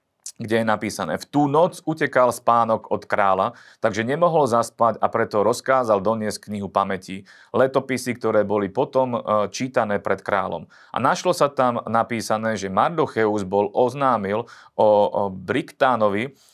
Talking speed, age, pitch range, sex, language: 135 wpm, 30-49, 105-130 Hz, male, Slovak